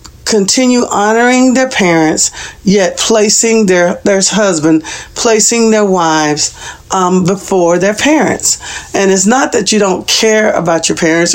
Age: 50-69